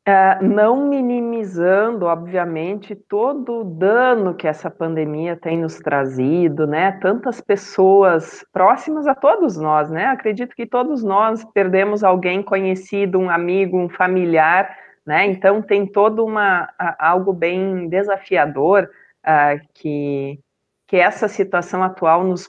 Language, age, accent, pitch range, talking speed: Portuguese, 40-59, Brazilian, 170-220 Hz, 115 wpm